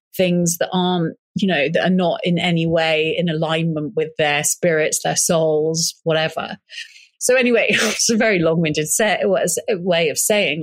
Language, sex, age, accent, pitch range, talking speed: English, female, 30-49, British, 170-230 Hz, 185 wpm